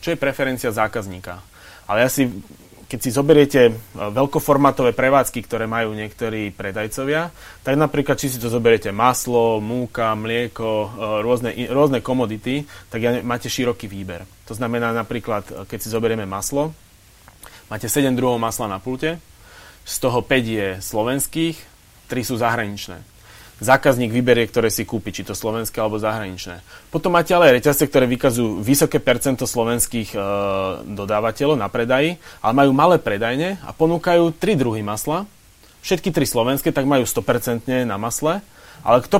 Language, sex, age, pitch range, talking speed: Slovak, male, 30-49, 110-135 Hz, 145 wpm